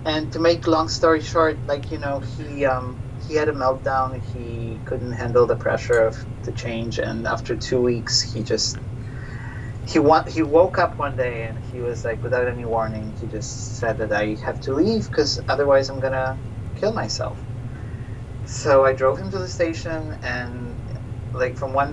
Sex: male